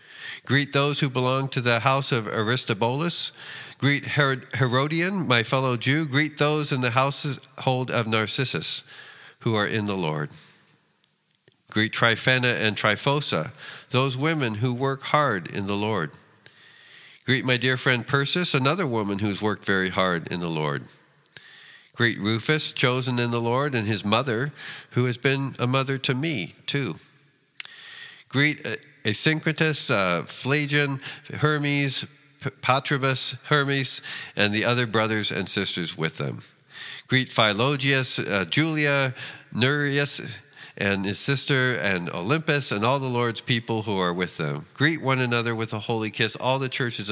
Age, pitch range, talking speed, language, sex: 50-69, 110-140 Hz, 145 wpm, English, male